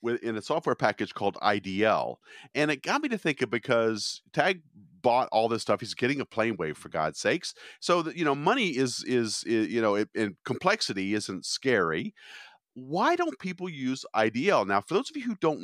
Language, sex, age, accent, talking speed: English, male, 40-59, American, 205 wpm